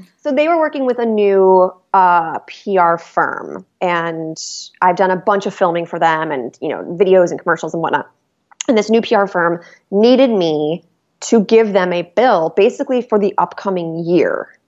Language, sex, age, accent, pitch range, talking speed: English, female, 20-39, American, 175-225 Hz, 180 wpm